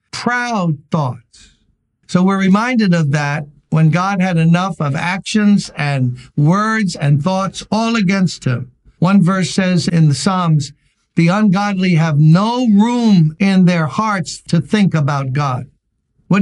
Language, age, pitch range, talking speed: English, 60-79, 145-185 Hz, 145 wpm